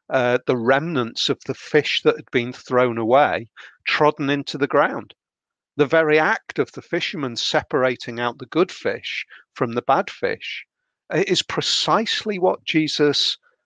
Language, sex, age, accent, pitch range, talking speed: English, male, 40-59, British, 125-155 Hz, 150 wpm